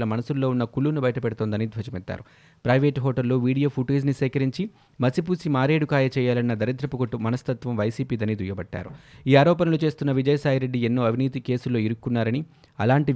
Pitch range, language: 120-150 Hz, Telugu